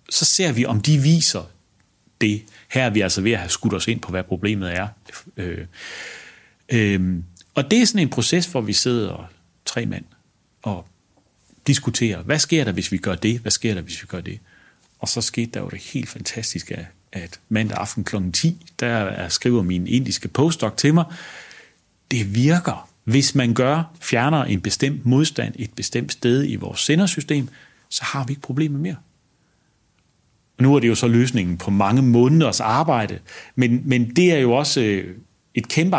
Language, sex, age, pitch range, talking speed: Danish, male, 40-59, 100-140 Hz, 180 wpm